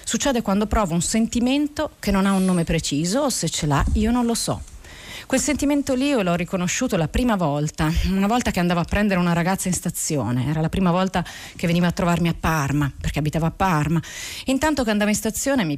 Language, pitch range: Italian, 165-225 Hz